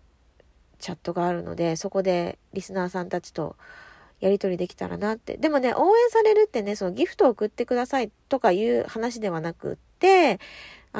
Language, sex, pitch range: Japanese, female, 190-295 Hz